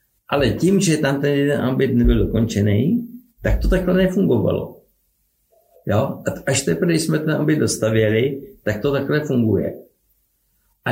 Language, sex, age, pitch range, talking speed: Czech, male, 60-79, 110-150 Hz, 145 wpm